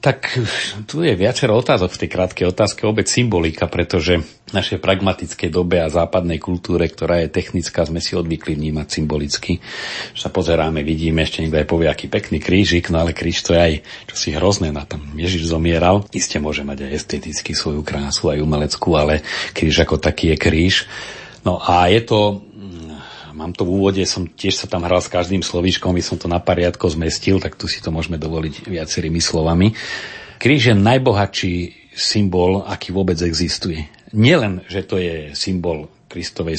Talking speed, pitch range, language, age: 175 wpm, 80-95 Hz, Slovak, 40-59